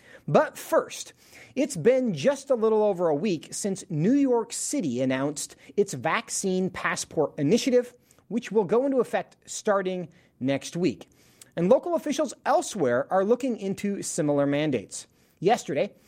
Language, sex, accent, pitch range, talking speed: English, male, American, 165-245 Hz, 140 wpm